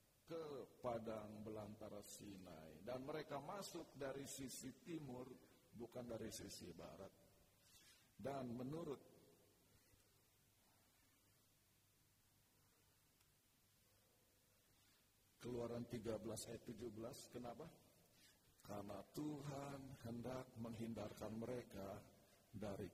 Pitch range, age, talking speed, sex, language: 105-145 Hz, 50-69, 75 wpm, male, Indonesian